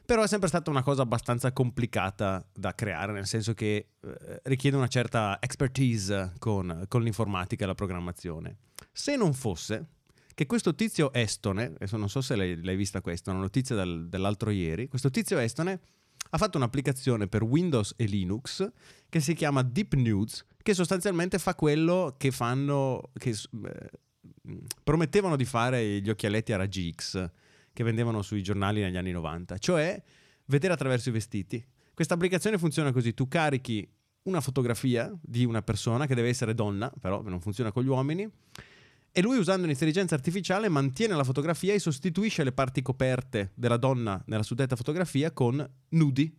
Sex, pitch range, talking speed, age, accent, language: male, 105-145 Hz, 165 wpm, 30-49, native, Italian